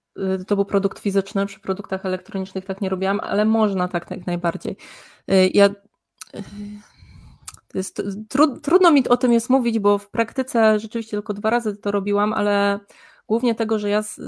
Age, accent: 20-39, native